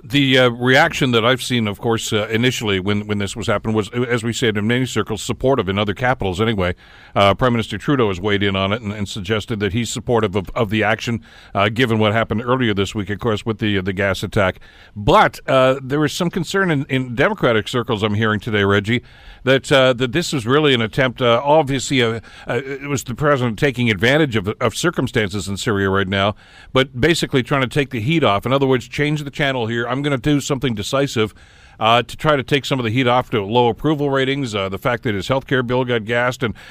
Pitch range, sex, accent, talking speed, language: 105-130 Hz, male, American, 235 wpm, English